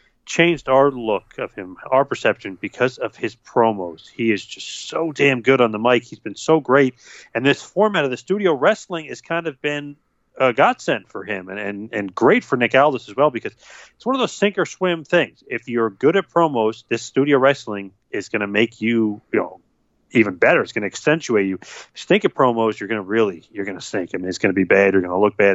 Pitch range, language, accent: 105-125 Hz, English, American